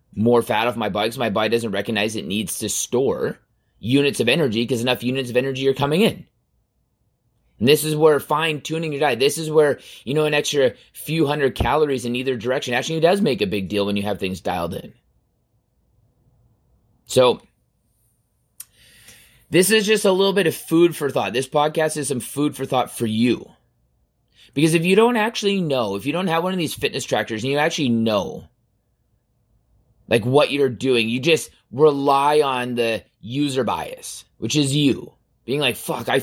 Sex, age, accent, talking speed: male, 20-39, American, 190 wpm